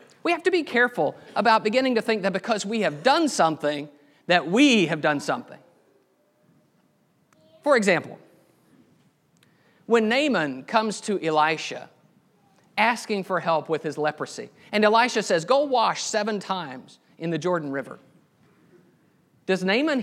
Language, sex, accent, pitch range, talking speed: English, male, American, 170-235 Hz, 140 wpm